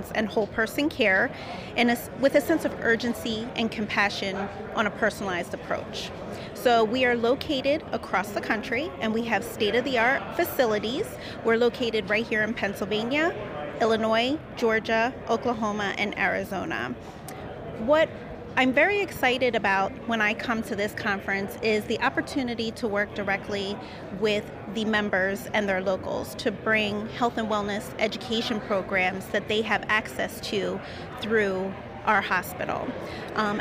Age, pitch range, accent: 30-49, 210-245 Hz, American